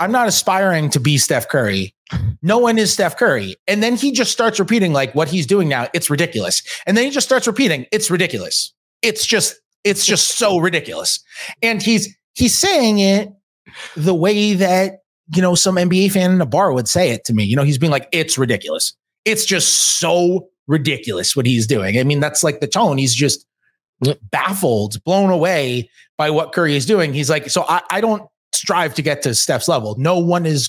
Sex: male